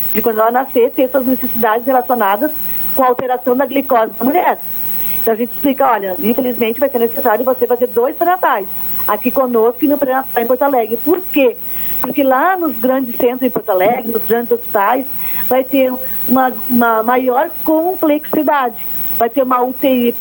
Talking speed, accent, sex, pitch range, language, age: 175 wpm, Brazilian, female, 235-275 Hz, Portuguese, 50-69